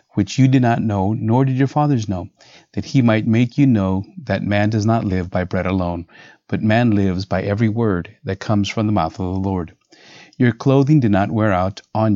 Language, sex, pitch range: English, male, 95-120 Hz